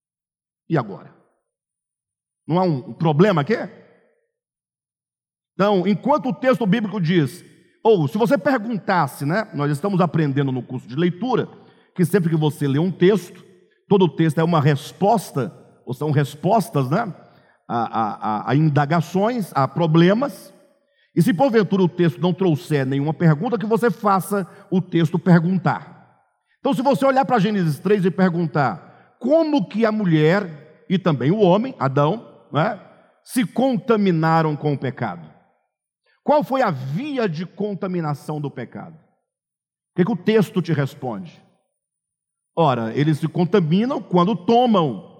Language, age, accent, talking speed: Portuguese, 50-69, Brazilian, 145 wpm